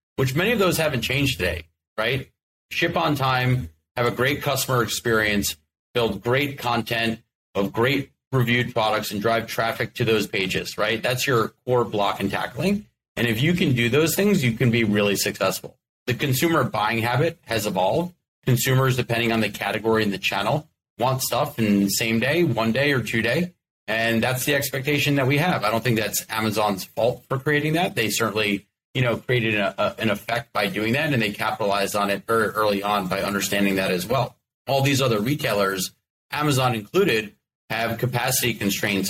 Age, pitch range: 30-49, 105-130 Hz